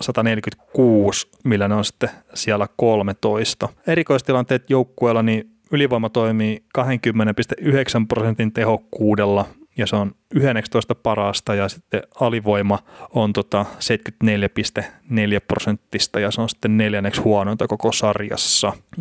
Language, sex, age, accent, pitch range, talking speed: Finnish, male, 30-49, native, 105-120 Hz, 110 wpm